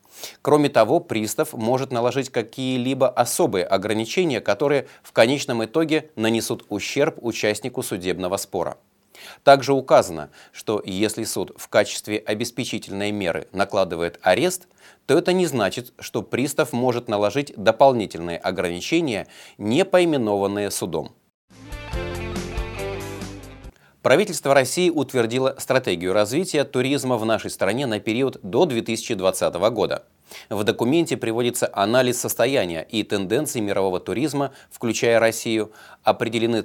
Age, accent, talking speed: 30-49, native, 110 wpm